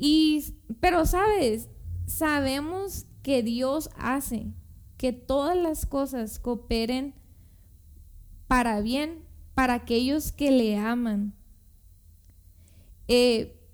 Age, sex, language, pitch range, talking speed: 20-39, female, Spanish, 215-300 Hz, 85 wpm